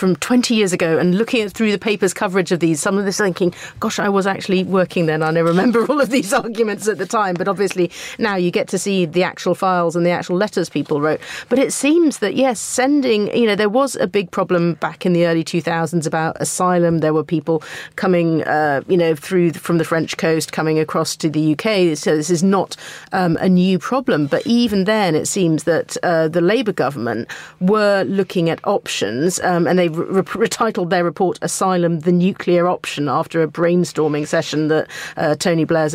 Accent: British